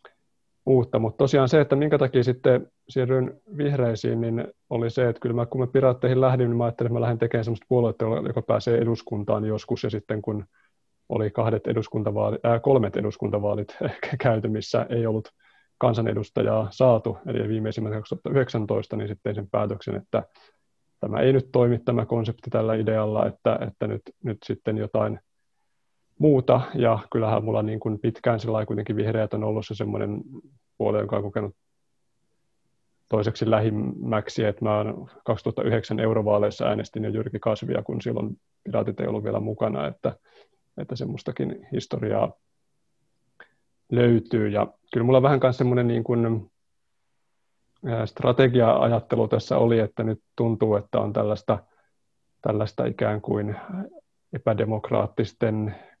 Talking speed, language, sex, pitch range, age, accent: 140 wpm, Finnish, male, 110-125 Hz, 30-49, native